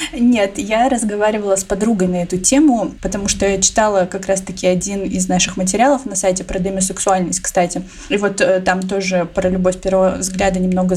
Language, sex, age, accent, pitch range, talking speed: Russian, female, 20-39, native, 185-215 Hz, 175 wpm